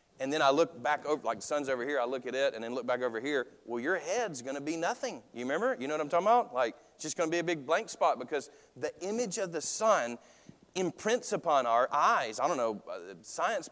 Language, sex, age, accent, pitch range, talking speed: English, male, 40-59, American, 125-175 Hz, 265 wpm